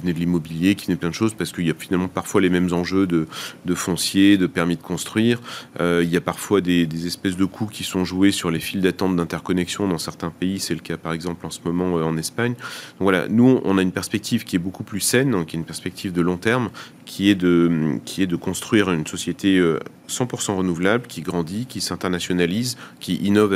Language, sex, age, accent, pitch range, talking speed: French, male, 30-49, French, 90-110 Hz, 235 wpm